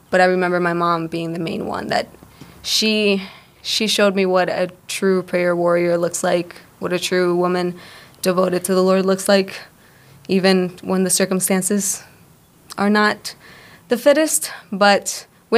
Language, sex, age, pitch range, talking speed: English, female, 20-39, 180-210 Hz, 160 wpm